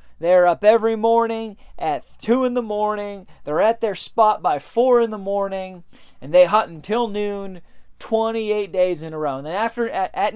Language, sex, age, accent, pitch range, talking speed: English, male, 30-49, American, 150-220 Hz, 185 wpm